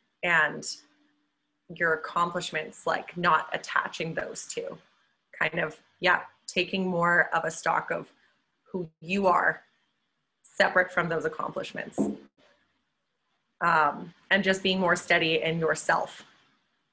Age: 20-39